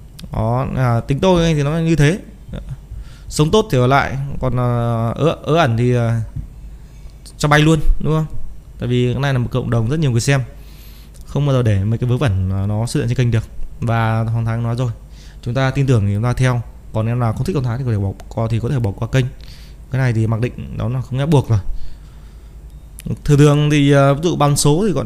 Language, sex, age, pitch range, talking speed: Vietnamese, male, 20-39, 110-140 Hz, 240 wpm